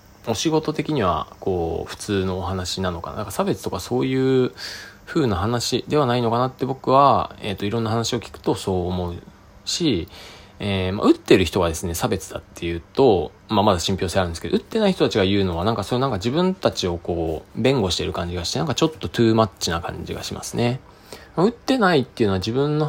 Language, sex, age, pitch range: Japanese, male, 20-39, 90-120 Hz